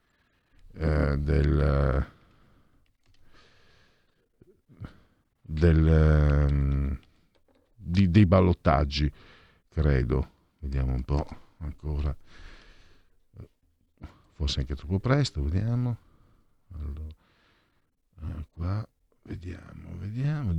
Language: Italian